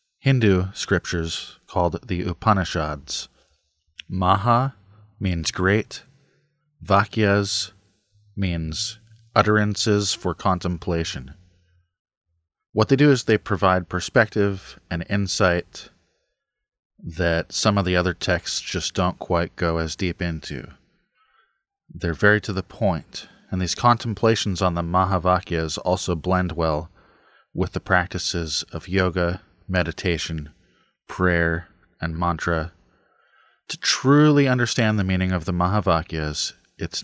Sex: male